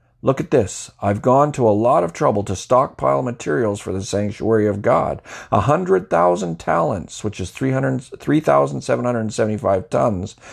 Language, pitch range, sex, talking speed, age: English, 100-130 Hz, male, 195 wpm, 40-59